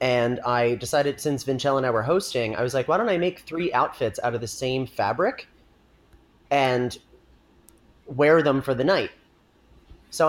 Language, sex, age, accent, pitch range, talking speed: English, male, 30-49, American, 110-135 Hz, 175 wpm